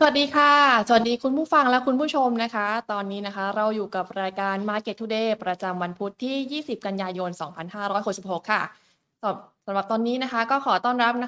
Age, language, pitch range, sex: 20-39, Thai, 195-245 Hz, female